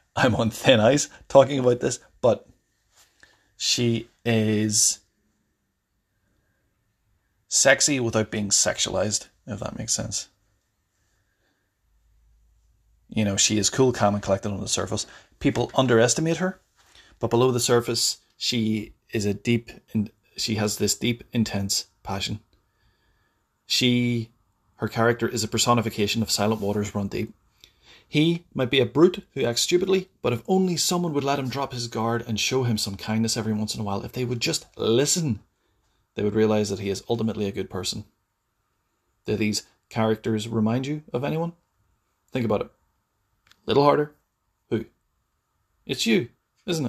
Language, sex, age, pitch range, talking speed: English, male, 30-49, 105-125 Hz, 150 wpm